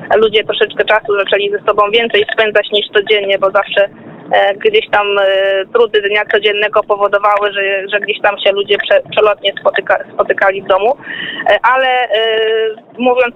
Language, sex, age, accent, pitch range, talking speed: Polish, female, 20-39, native, 210-235 Hz, 130 wpm